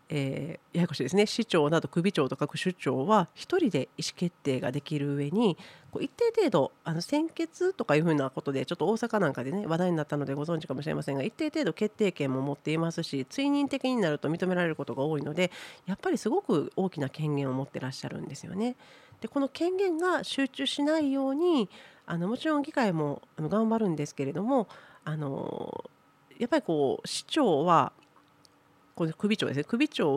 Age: 40-59